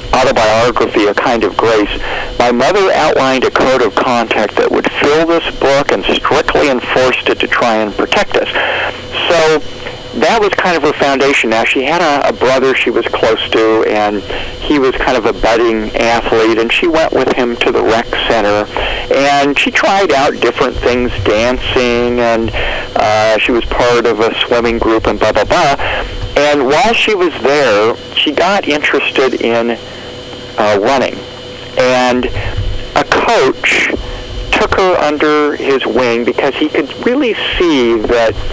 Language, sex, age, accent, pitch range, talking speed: English, male, 50-69, American, 110-140 Hz, 165 wpm